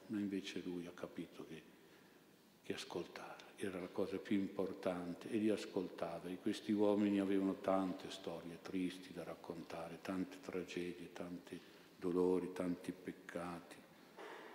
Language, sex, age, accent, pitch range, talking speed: Italian, male, 50-69, native, 90-100 Hz, 130 wpm